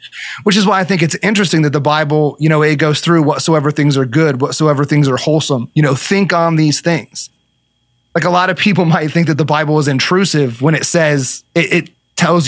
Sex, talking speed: male, 225 wpm